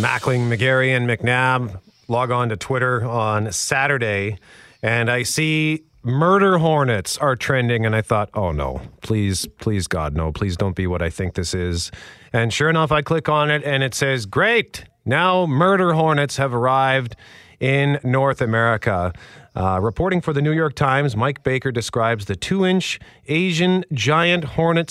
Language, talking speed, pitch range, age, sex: English, 165 wpm, 110-150 Hz, 40-59, male